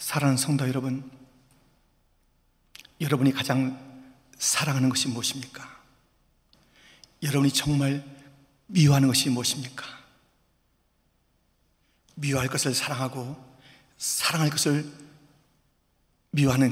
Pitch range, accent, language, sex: 130-160 Hz, native, Korean, male